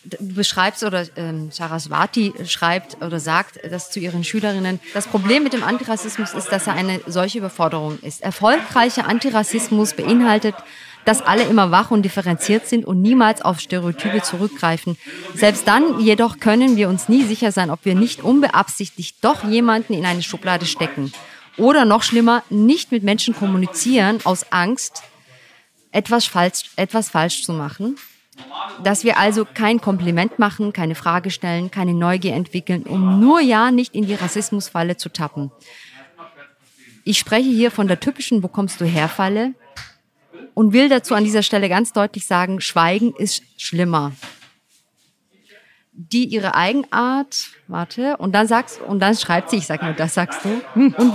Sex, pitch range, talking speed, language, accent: female, 180-230 Hz, 155 wpm, German, German